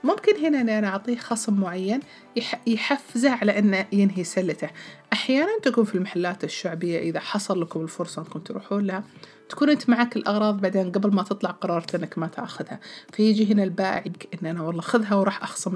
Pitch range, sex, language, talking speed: 180-220 Hz, female, Arabic, 170 wpm